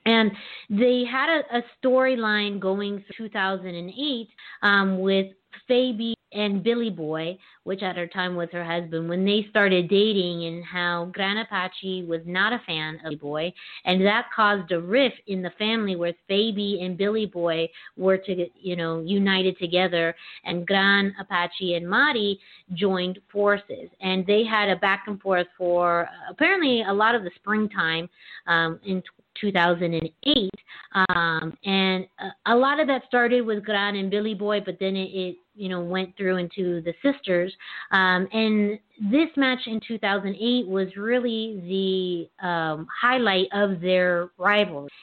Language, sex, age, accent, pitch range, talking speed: English, female, 30-49, American, 180-220 Hz, 155 wpm